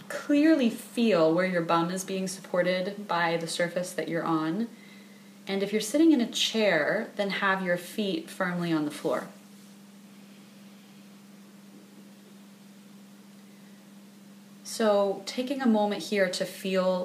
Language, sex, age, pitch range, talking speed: English, female, 20-39, 180-210 Hz, 125 wpm